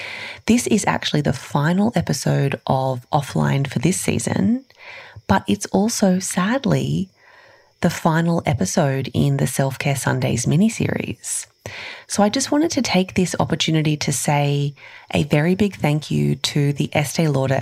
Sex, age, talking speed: female, 30-49, 145 wpm